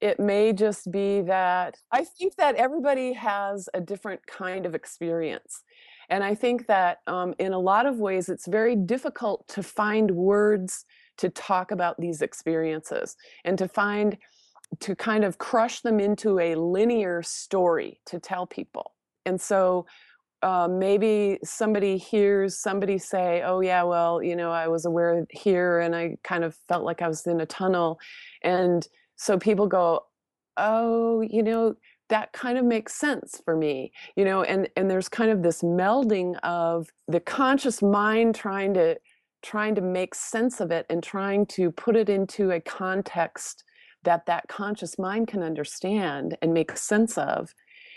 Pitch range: 175-220 Hz